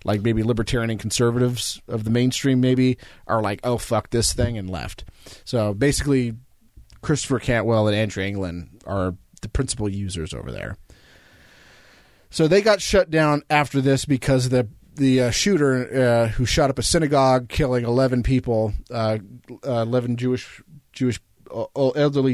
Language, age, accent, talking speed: English, 30-49, American, 155 wpm